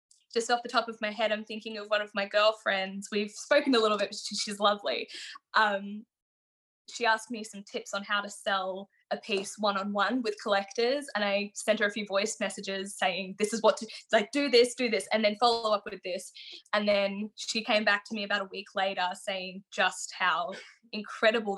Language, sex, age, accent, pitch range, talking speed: English, female, 10-29, Australian, 200-230 Hz, 210 wpm